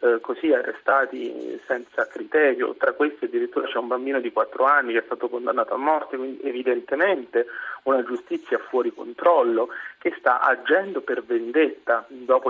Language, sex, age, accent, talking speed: Italian, male, 40-59, native, 150 wpm